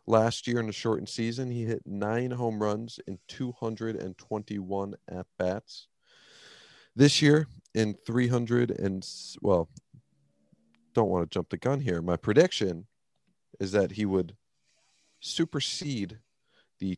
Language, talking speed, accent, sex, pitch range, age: English, 125 wpm, American, male, 90-120 Hz, 40-59